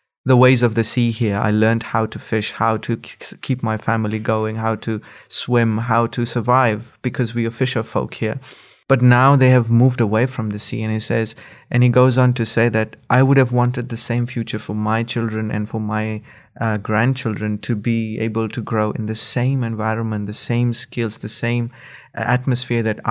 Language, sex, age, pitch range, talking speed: English, male, 20-39, 110-125 Hz, 210 wpm